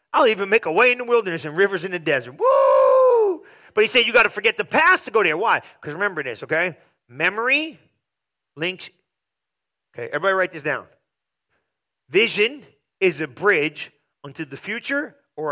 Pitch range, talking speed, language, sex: 160-245 Hz, 180 wpm, English, male